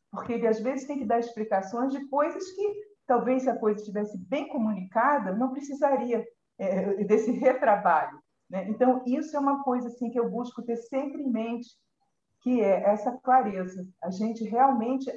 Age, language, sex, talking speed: 50-69, Portuguese, female, 175 wpm